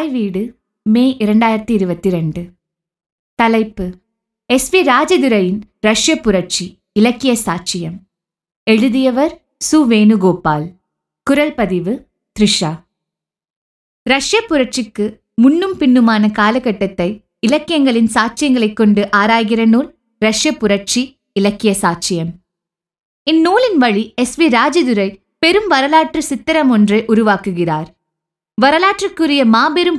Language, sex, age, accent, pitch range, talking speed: Tamil, female, 20-39, native, 205-280 Hz, 90 wpm